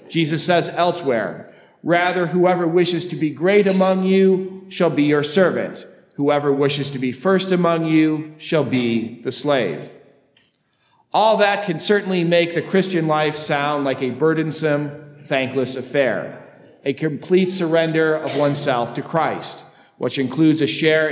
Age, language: 50-69, English